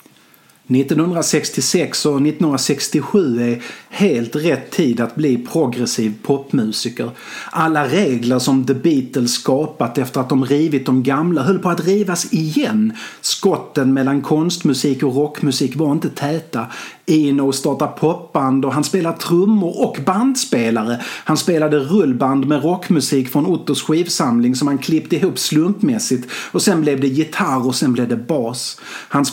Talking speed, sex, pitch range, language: 140 wpm, male, 130-160 Hz, Swedish